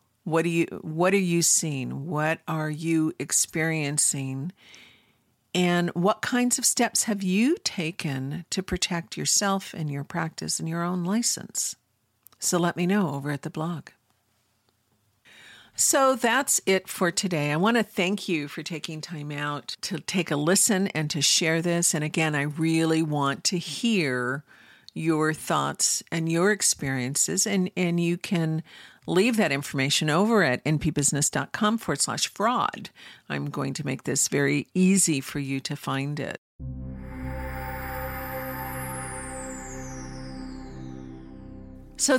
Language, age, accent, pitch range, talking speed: English, 50-69, American, 145-190 Hz, 140 wpm